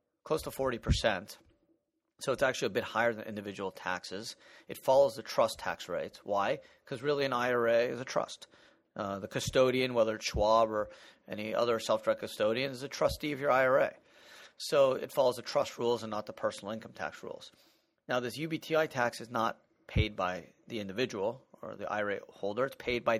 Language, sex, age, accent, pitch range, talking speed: English, male, 30-49, American, 110-135 Hz, 190 wpm